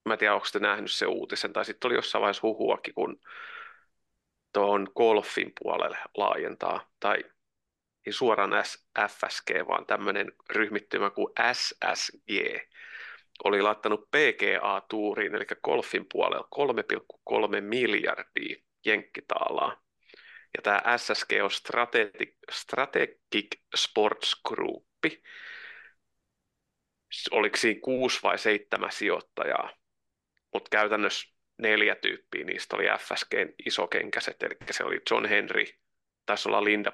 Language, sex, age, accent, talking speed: Finnish, male, 30-49, native, 105 wpm